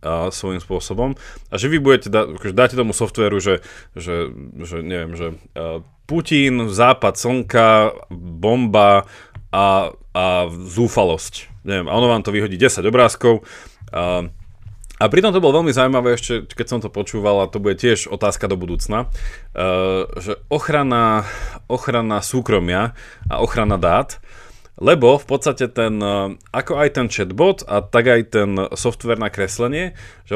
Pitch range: 95-125 Hz